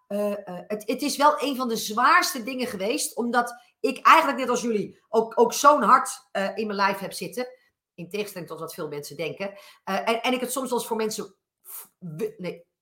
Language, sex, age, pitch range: Dutch, female, 40-59, 190-255 Hz